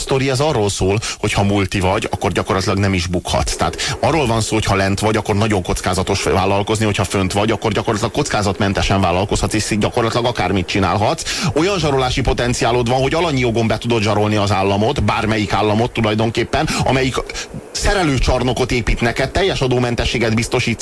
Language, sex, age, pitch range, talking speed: Hungarian, male, 30-49, 110-135 Hz, 160 wpm